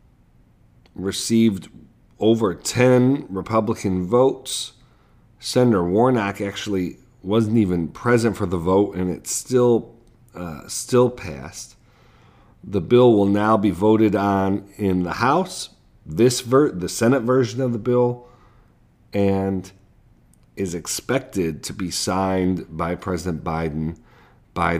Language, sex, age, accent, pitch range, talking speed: English, male, 40-59, American, 95-120 Hz, 115 wpm